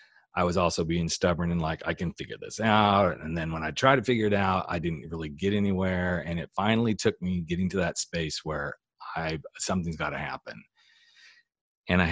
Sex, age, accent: male, 40-59, American